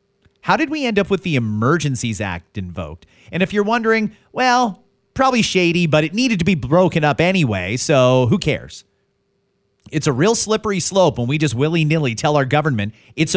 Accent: American